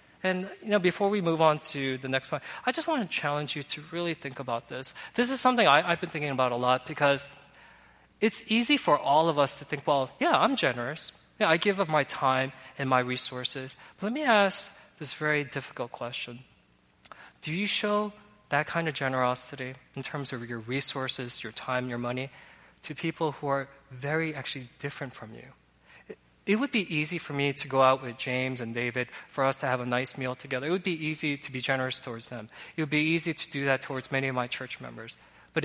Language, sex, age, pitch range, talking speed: English, male, 20-39, 130-165 Hz, 215 wpm